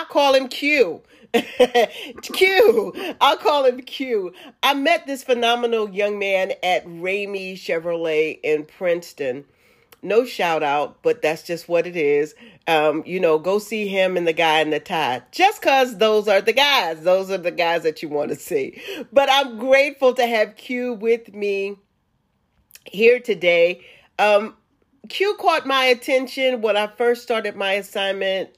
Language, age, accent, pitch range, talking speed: English, 40-59, American, 180-265 Hz, 160 wpm